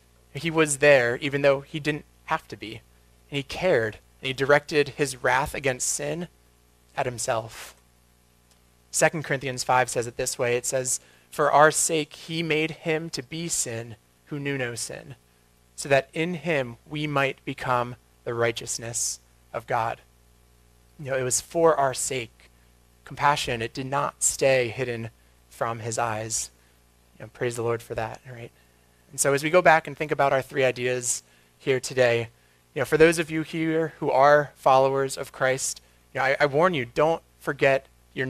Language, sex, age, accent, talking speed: English, male, 30-49, American, 180 wpm